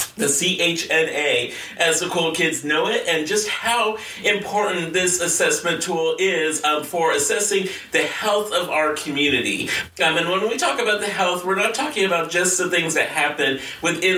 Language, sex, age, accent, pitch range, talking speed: English, male, 40-59, American, 150-195 Hz, 180 wpm